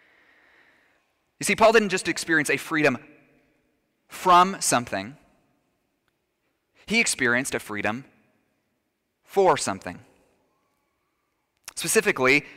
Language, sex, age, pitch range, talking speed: English, male, 30-49, 130-180 Hz, 80 wpm